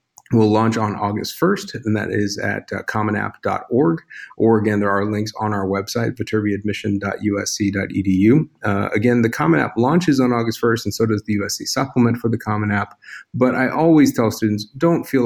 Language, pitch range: English, 105-115 Hz